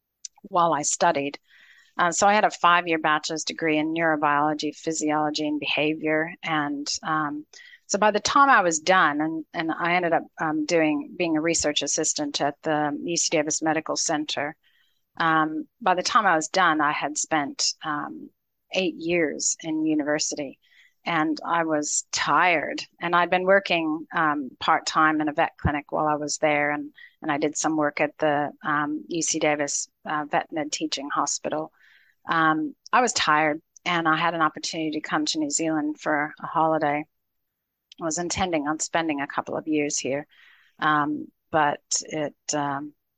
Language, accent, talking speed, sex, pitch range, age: English, American, 170 wpm, female, 150-170 Hz, 40-59